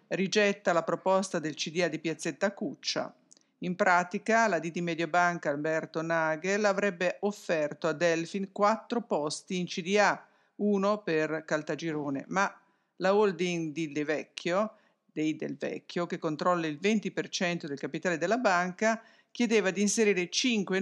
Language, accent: English, Italian